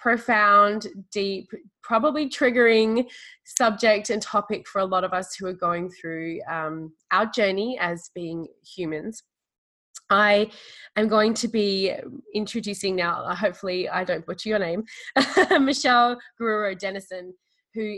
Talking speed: 125 wpm